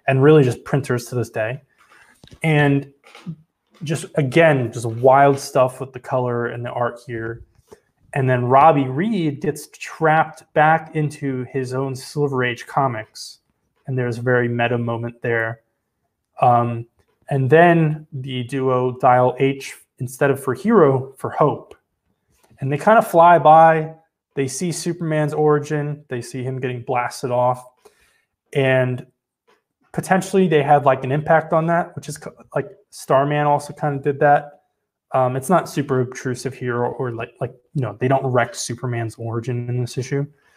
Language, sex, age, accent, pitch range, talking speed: English, male, 20-39, American, 125-150 Hz, 160 wpm